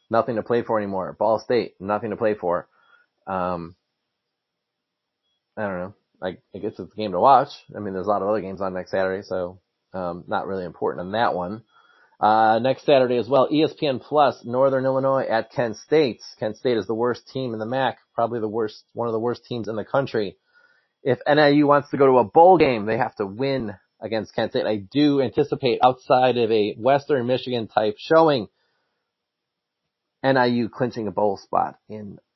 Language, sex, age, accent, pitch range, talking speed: English, male, 30-49, American, 105-140 Hz, 195 wpm